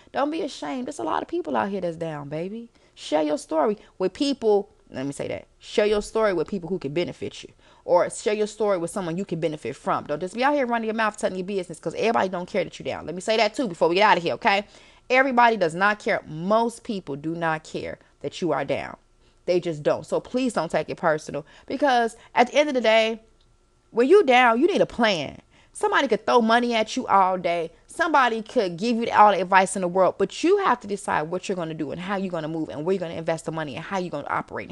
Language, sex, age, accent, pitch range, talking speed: English, female, 20-39, American, 175-235 Hz, 270 wpm